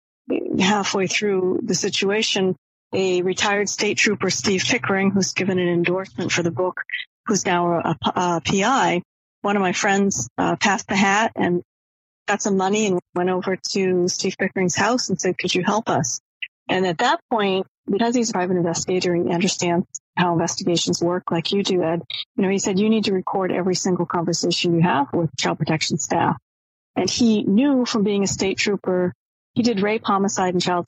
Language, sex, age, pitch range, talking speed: English, female, 40-59, 175-210 Hz, 185 wpm